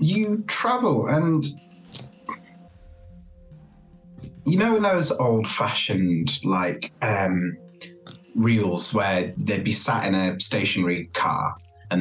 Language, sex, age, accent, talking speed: English, male, 30-49, British, 100 wpm